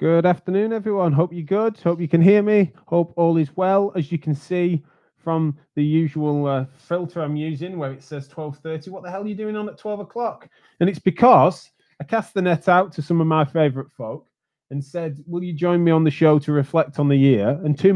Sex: male